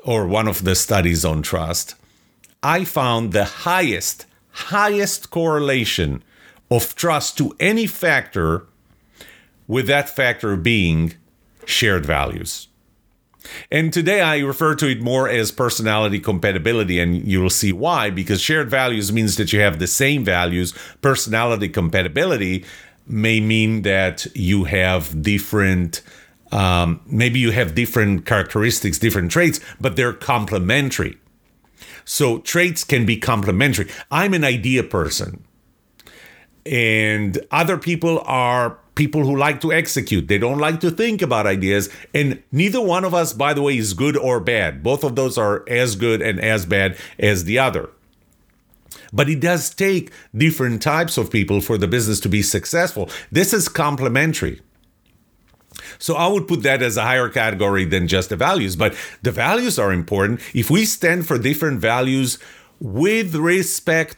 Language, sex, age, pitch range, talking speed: English, male, 40-59, 100-150 Hz, 150 wpm